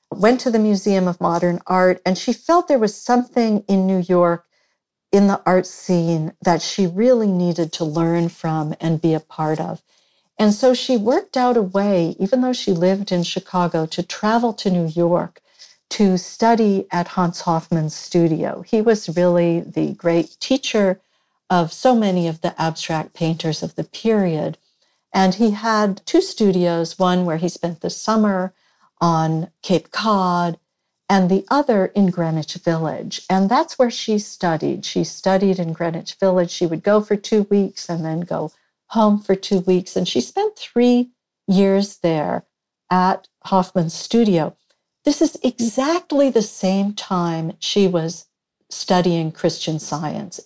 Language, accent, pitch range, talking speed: English, American, 170-215 Hz, 160 wpm